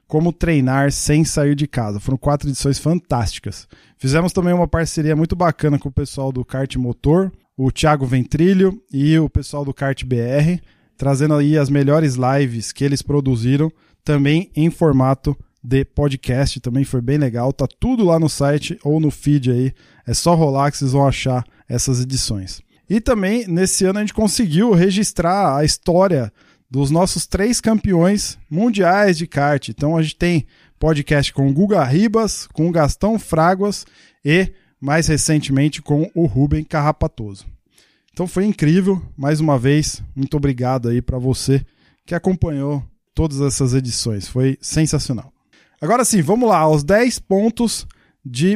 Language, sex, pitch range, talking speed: Portuguese, male, 135-175 Hz, 160 wpm